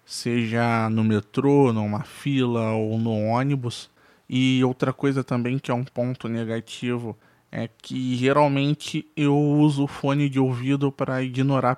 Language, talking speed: Portuguese, 145 wpm